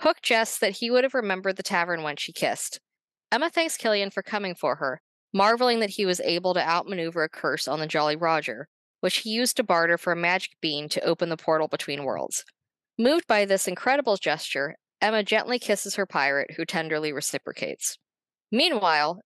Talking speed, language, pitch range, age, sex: 190 wpm, English, 170-235 Hz, 20-39, female